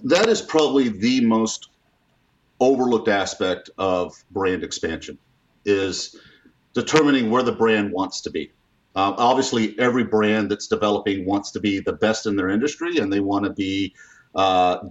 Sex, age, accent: male, 50-69, American